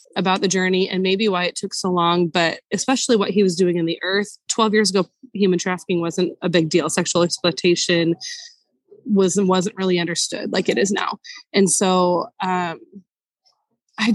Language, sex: English, female